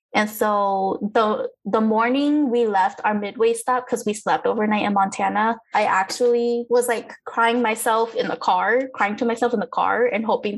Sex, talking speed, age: female, 185 wpm, 10-29